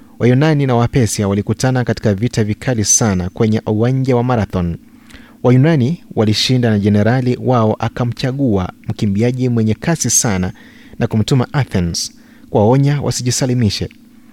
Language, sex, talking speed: Swahili, male, 115 wpm